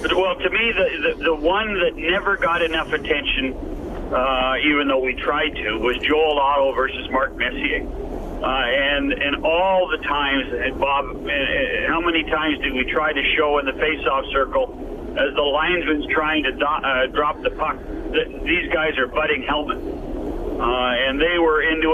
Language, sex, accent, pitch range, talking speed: English, male, American, 145-180 Hz, 185 wpm